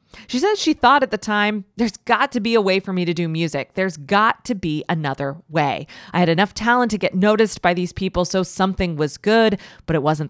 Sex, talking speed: female, 240 wpm